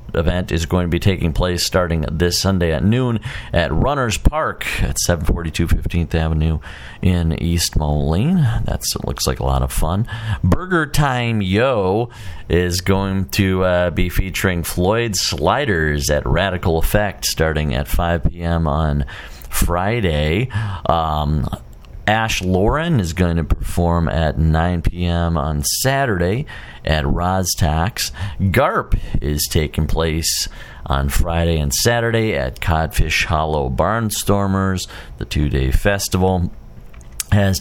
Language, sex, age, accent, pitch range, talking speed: English, male, 40-59, American, 80-100 Hz, 130 wpm